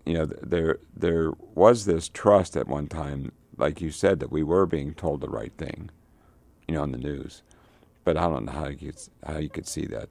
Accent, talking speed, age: American, 225 wpm, 60-79